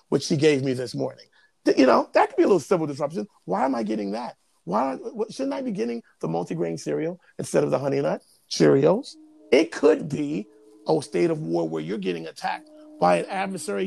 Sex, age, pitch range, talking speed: male, 30-49, 135-210 Hz, 210 wpm